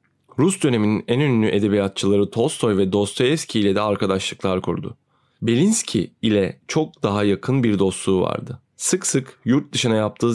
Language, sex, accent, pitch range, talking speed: Turkish, male, native, 100-125 Hz, 145 wpm